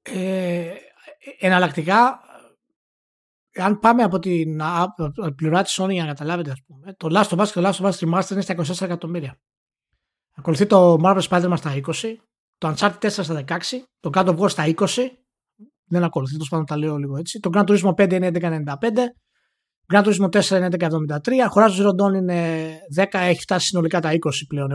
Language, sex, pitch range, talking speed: Greek, male, 160-205 Hz, 165 wpm